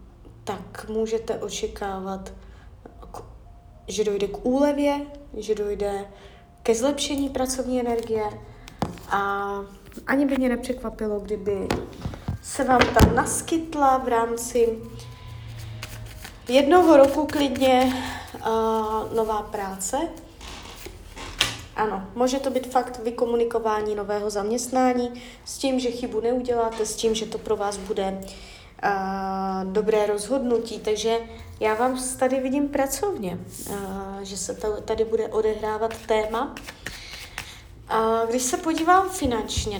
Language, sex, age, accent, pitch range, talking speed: Czech, female, 20-39, native, 205-255 Hz, 105 wpm